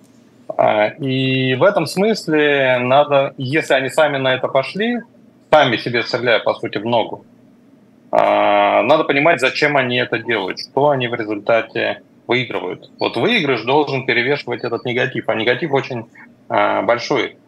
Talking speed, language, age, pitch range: 135 wpm, Russian, 30-49, 120-165 Hz